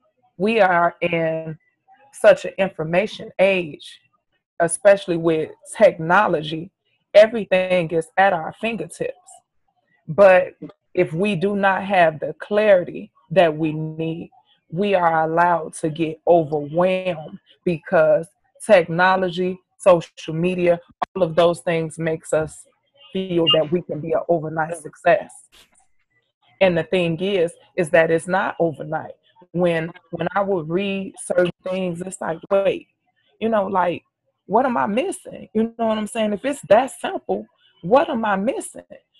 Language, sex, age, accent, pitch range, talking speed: English, female, 20-39, American, 165-205 Hz, 135 wpm